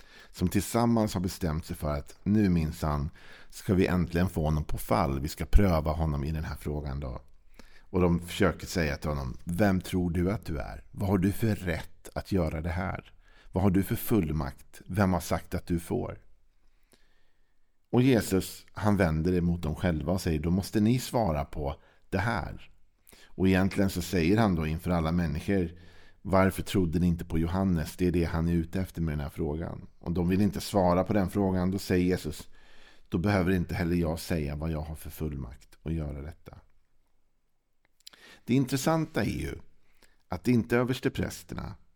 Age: 50-69